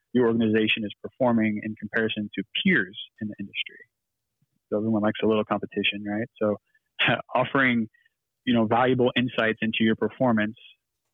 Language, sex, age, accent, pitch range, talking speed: English, male, 20-39, American, 105-115 Hz, 150 wpm